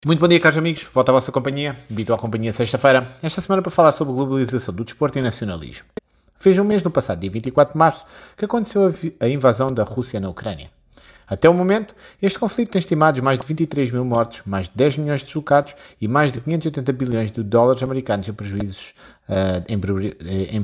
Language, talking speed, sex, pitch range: Portuguese, 210 wpm, male, 115-170 Hz